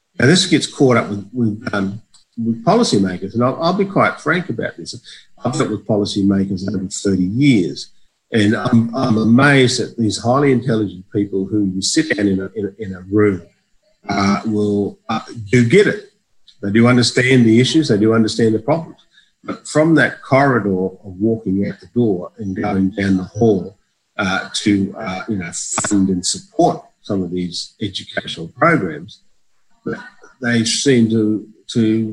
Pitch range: 100-120 Hz